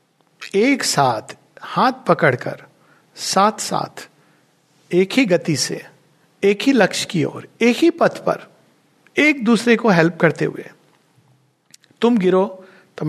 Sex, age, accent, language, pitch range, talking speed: male, 60-79, native, Hindi, 135-170 Hz, 130 wpm